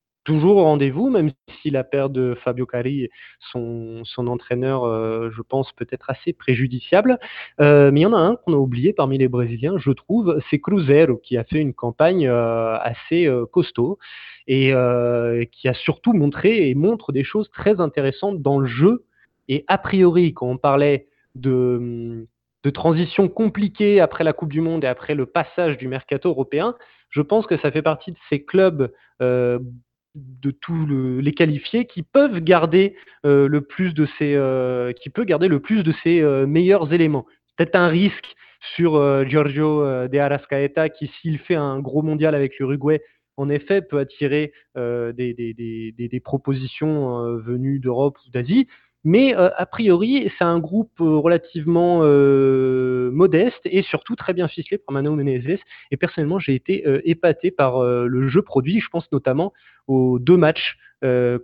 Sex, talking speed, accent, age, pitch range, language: male, 180 wpm, French, 20-39, 125-170 Hz, French